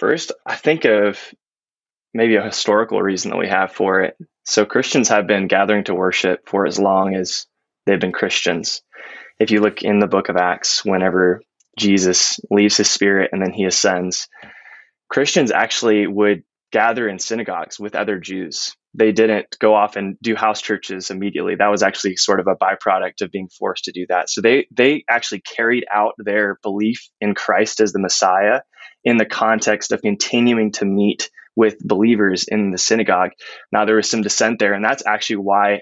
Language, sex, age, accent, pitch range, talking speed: English, male, 20-39, American, 100-110 Hz, 185 wpm